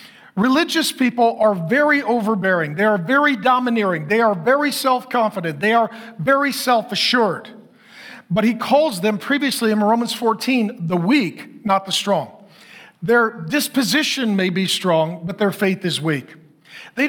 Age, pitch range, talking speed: 40-59, 195-250 Hz, 145 wpm